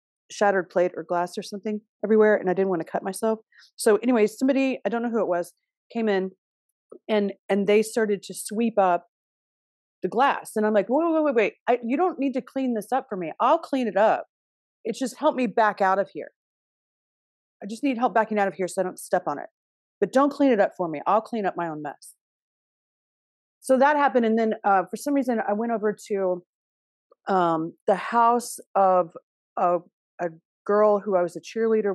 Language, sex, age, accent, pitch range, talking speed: English, female, 30-49, American, 190-260 Hz, 215 wpm